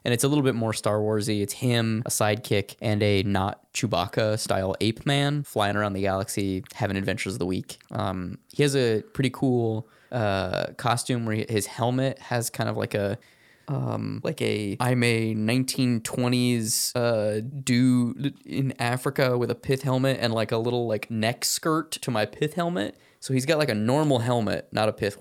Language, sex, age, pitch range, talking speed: English, male, 20-39, 105-130 Hz, 195 wpm